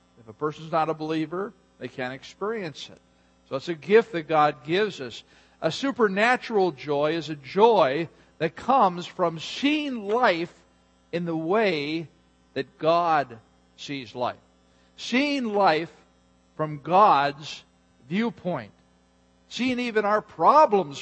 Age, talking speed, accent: 50-69, 130 wpm, American